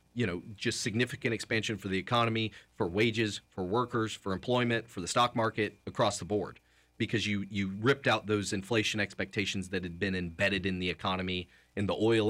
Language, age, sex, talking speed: English, 30-49, male, 190 wpm